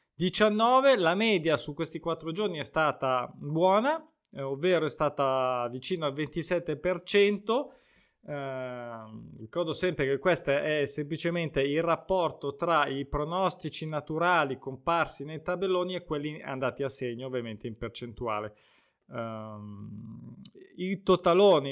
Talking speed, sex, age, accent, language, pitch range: 120 wpm, male, 20-39, native, Italian, 145-185 Hz